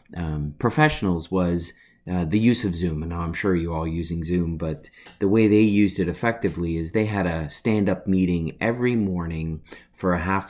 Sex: male